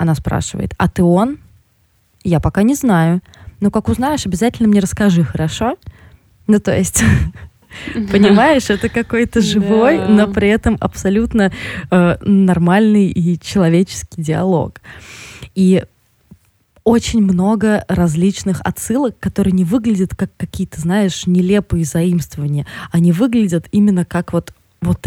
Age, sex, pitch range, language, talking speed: 20-39, female, 170-205 Hz, Russian, 120 wpm